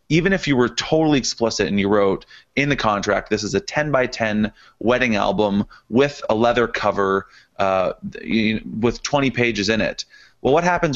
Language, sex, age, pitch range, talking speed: English, male, 30-49, 105-130 Hz, 180 wpm